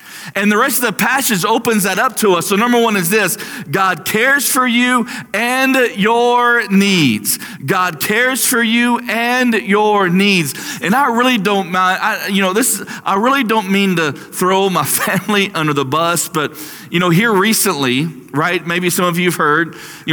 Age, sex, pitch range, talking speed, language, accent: 40-59, male, 140-195 Hz, 180 wpm, English, American